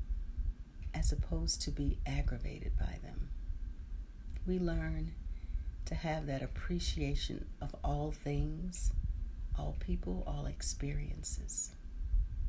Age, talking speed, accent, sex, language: 40-59, 95 wpm, American, female, English